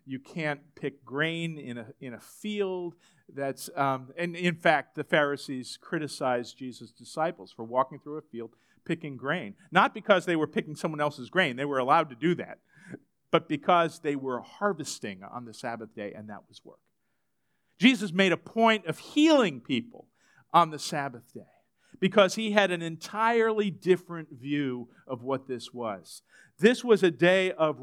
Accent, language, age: American, English, 50-69